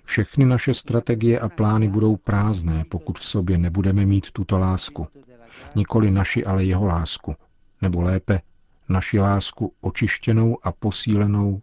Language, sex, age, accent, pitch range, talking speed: Czech, male, 50-69, native, 90-105 Hz, 135 wpm